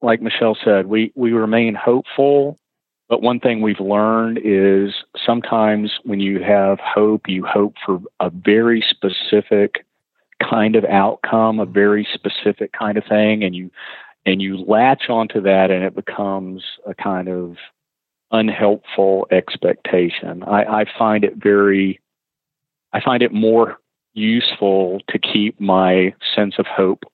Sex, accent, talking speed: male, American, 140 wpm